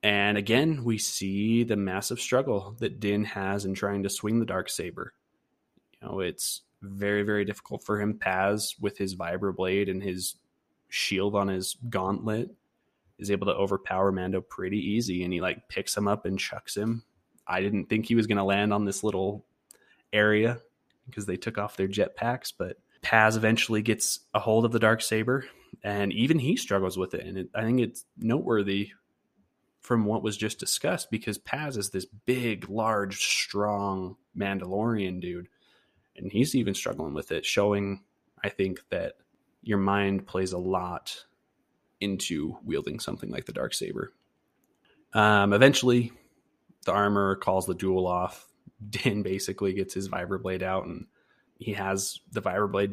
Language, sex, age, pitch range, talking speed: English, male, 20-39, 95-110 Hz, 165 wpm